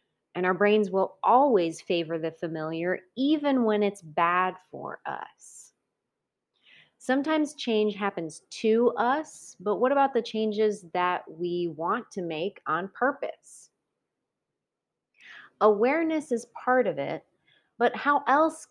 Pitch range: 175-235 Hz